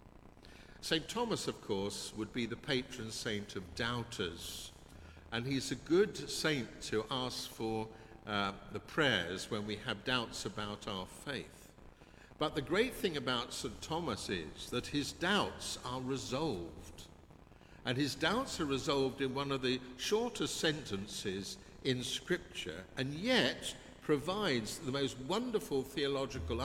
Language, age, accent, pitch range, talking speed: English, 60-79, British, 105-145 Hz, 140 wpm